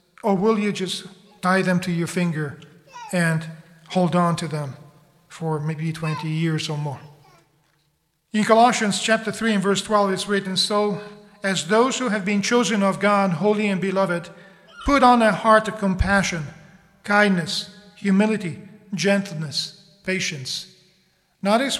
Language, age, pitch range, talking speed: English, 40-59, 175-205 Hz, 145 wpm